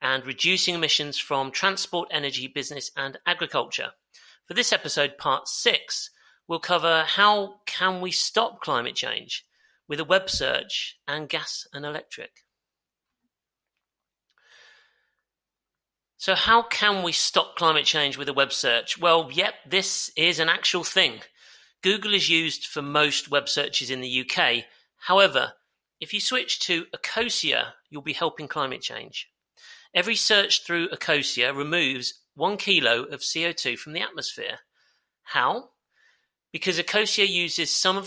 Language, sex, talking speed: English, male, 135 wpm